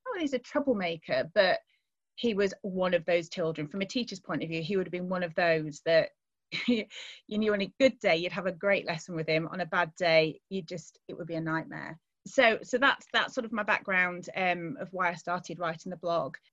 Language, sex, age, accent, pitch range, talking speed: English, female, 30-49, British, 170-210 Hz, 230 wpm